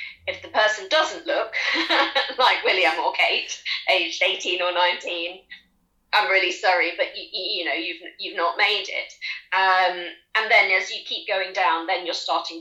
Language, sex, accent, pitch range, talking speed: English, female, British, 170-215 Hz, 170 wpm